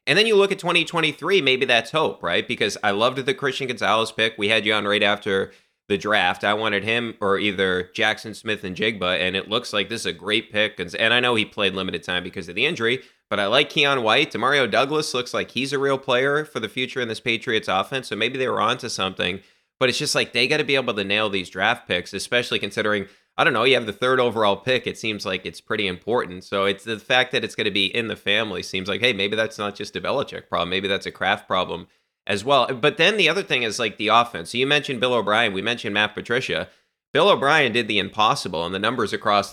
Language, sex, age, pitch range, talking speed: English, male, 20-39, 100-130 Hz, 255 wpm